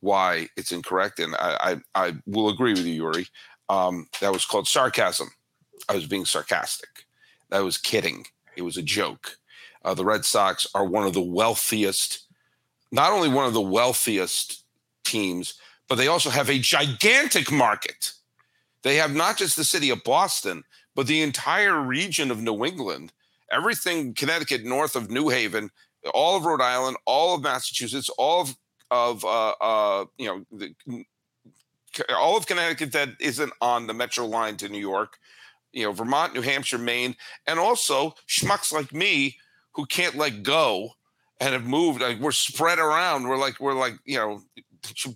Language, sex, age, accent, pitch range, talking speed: English, male, 50-69, American, 110-145 Hz, 170 wpm